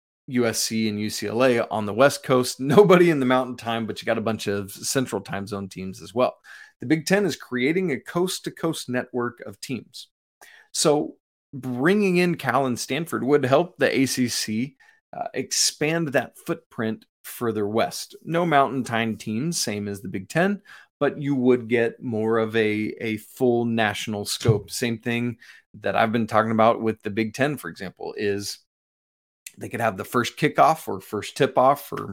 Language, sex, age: English, male, 30-49